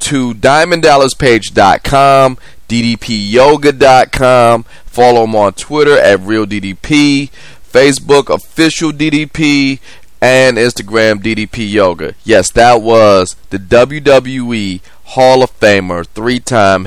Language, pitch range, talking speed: English, 105-140 Hz, 80 wpm